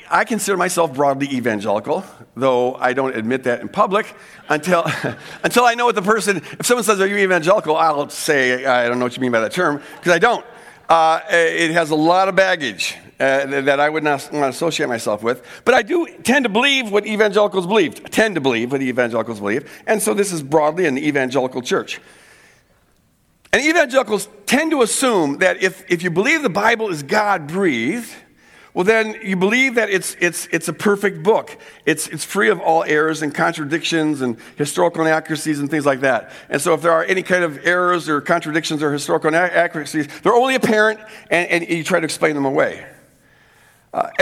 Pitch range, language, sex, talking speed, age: 145-210 Hz, English, male, 195 wpm, 50-69